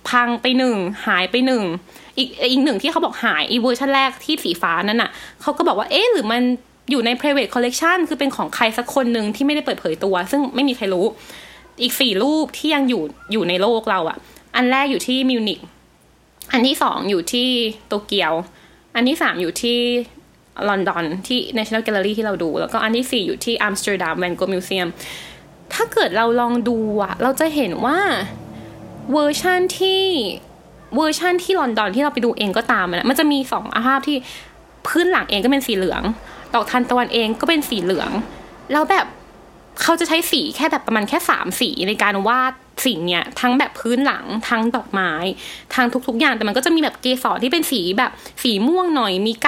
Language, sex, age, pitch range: Thai, female, 20-39, 215-290 Hz